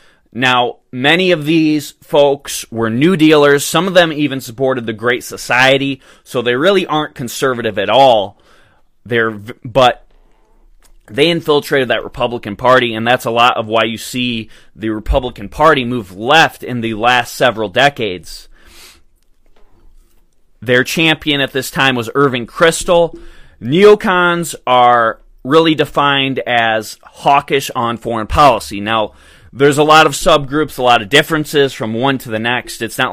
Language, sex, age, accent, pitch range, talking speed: English, male, 30-49, American, 115-140 Hz, 150 wpm